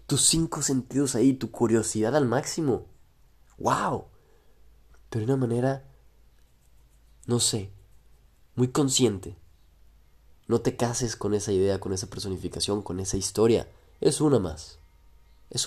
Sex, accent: male, Mexican